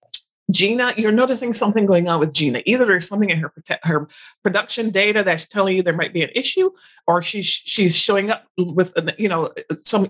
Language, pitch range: English, 180-230 Hz